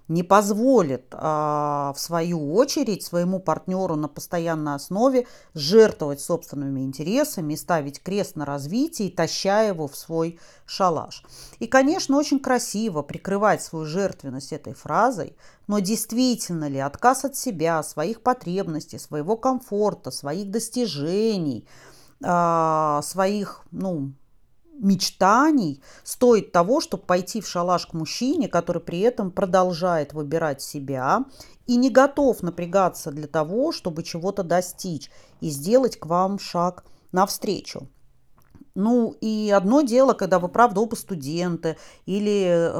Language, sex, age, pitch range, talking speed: Russian, female, 40-59, 155-205 Hz, 120 wpm